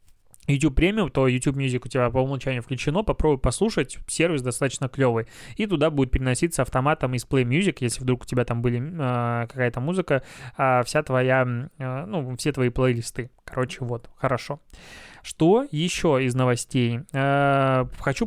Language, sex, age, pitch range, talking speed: Russian, male, 20-39, 125-145 Hz, 165 wpm